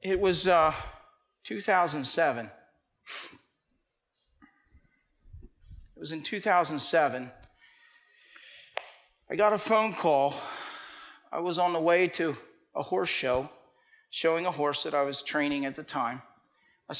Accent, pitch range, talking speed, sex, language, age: American, 140-190 Hz, 115 wpm, male, English, 50-69